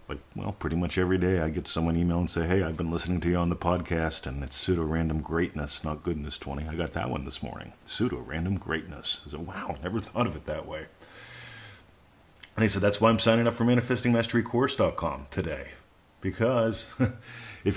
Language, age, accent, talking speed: English, 40-59, American, 195 wpm